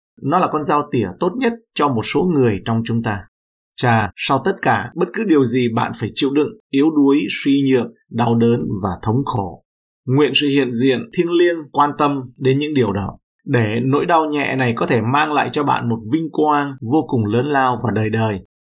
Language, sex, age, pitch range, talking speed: Vietnamese, male, 20-39, 115-145 Hz, 220 wpm